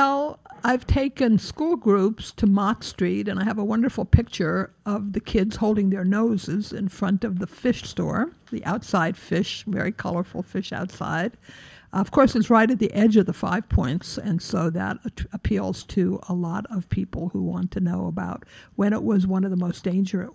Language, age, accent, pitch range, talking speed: English, 60-79, American, 190-230 Hz, 195 wpm